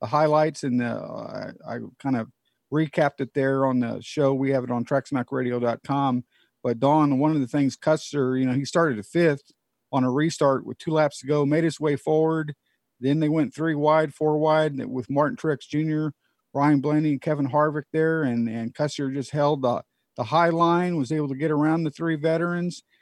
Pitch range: 135-170 Hz